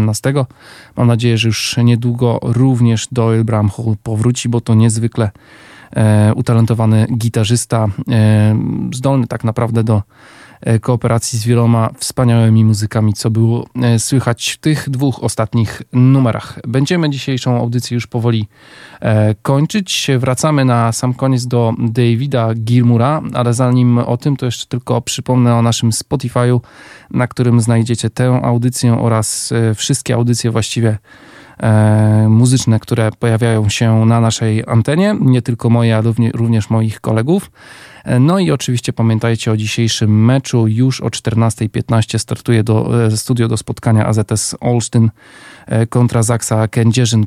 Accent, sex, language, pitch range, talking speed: native, male, Polish, 110-125 Hz, 125 wpm